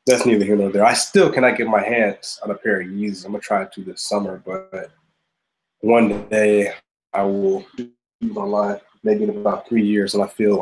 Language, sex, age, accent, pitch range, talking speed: English, male, 20-39, American, 100-160 Hz, 220 wpm